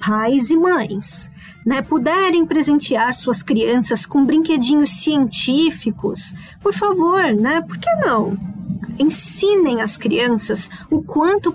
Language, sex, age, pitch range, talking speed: Portuguese, female, 20-39, 225-310 Hz, 115 wpm